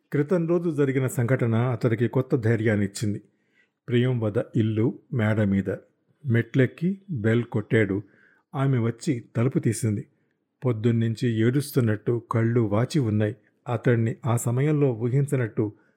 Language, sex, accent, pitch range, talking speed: Telugu, male, native, 110-140 Hz, 105 wpm